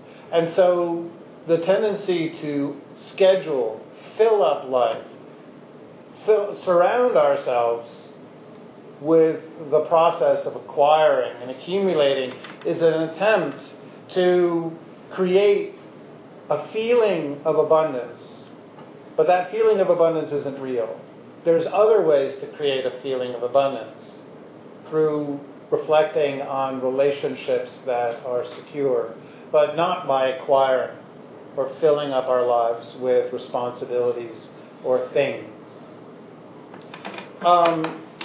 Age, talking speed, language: 50-69, 100 wpm, English